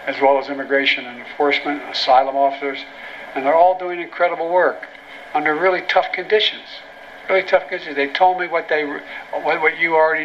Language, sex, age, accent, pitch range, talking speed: English, male, 60-79, American, 145-180 Hz, 170 wpm